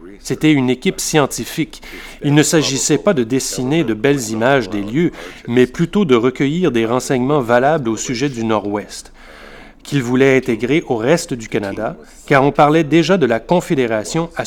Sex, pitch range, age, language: male, 120-160 Hz, 30-49, French